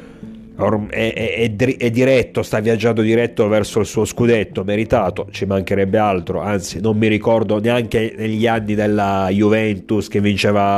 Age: 30-49